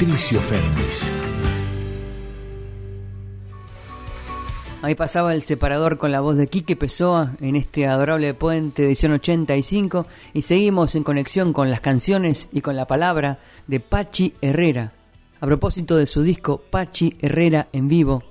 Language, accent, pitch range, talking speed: Spanish, Argentinian, 135-165 Hz, 135 wpm